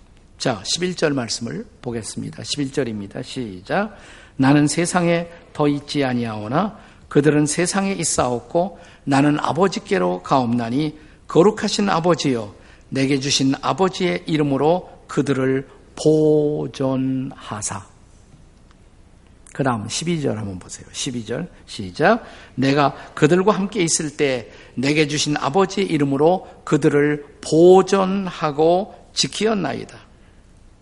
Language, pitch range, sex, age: Korean, 125-175 Hz, male, 50-69